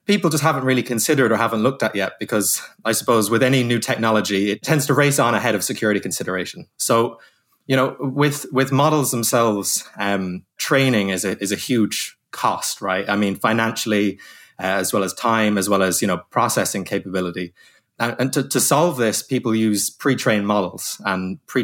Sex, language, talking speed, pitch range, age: male, English, 195 wpm, 100-125 Hz, 20-39